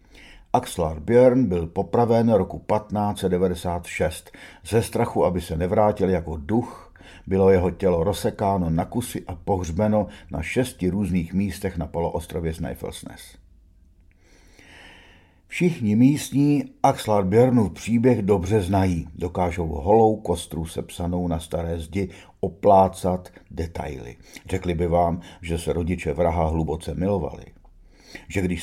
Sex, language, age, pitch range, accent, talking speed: male, Czech, 50-69, 85-100 Hz, native, 115 wpm